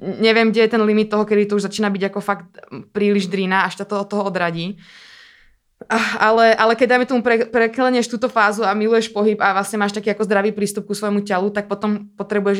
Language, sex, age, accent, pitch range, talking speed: Czech, female, 20-39, native, 190-210 Hz, 215 wpm